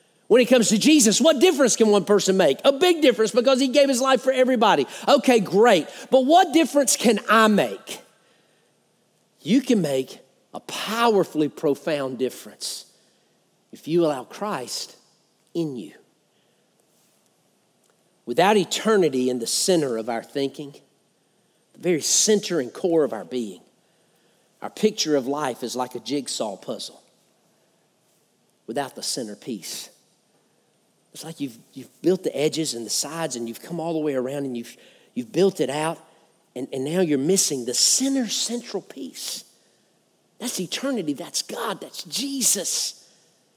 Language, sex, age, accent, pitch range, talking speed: English, male, 50-69, American, 155-255 Hz, 150 wpm